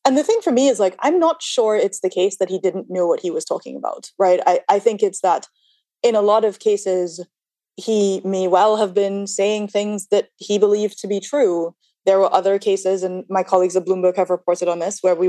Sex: female